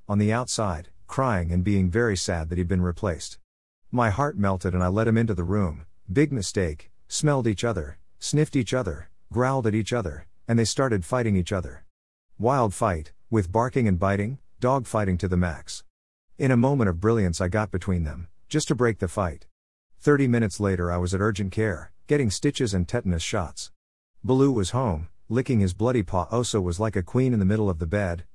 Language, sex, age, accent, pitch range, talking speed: Romanian, male, 50-69, American, 90-120 Hz, 205 wpm